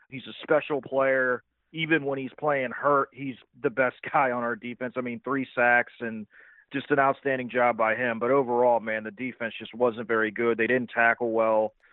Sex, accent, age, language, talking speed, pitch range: male, American, 30-49, English, 200 wpm, 120-145 Hz